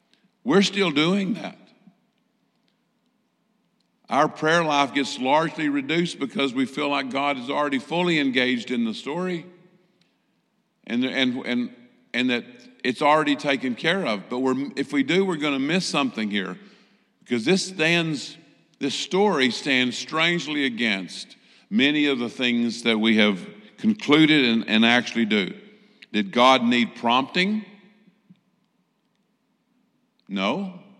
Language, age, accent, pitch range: English, 50-69, American, 120-200 Hz